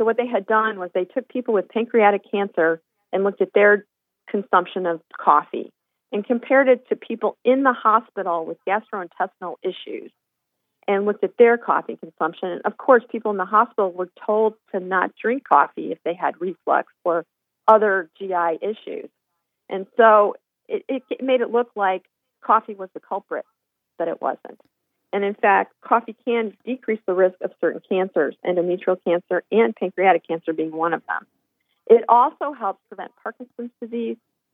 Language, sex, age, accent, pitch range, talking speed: English, female, 40-59, American, 185-235 Hz, 170 wpm